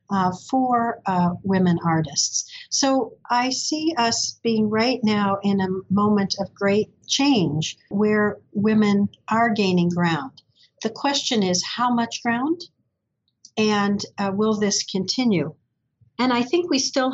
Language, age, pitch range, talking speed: English, 50-69, 190-225 Hz, 135 wpm